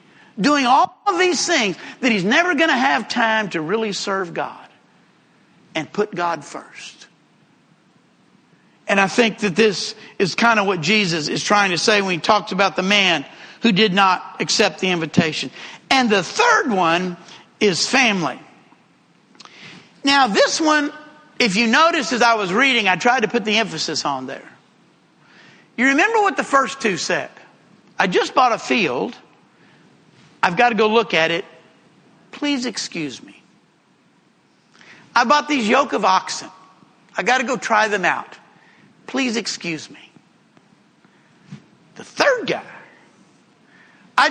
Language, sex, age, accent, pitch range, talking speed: English, male, 50-69, American, 200-280 Hz, 150 wpm